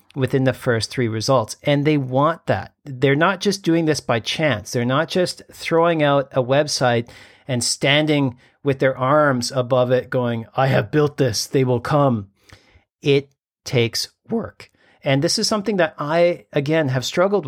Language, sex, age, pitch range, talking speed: English, male, 40-59, 120-160 Hz, 170 wpm